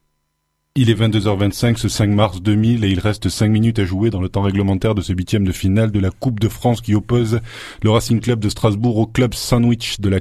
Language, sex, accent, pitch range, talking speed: French, male, French, 90-110 Hz, 235 wpm